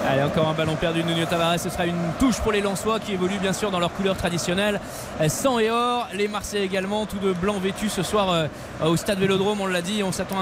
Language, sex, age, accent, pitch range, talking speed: French, male, 20-39, French, 195-240 Hz, 250 wpm